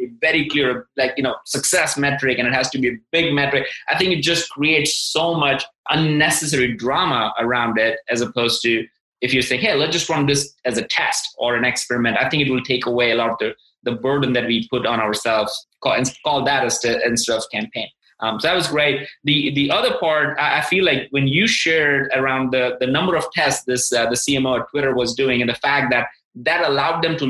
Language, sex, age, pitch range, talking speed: English, male, 20-39, 125-155 Hz, 235 wpm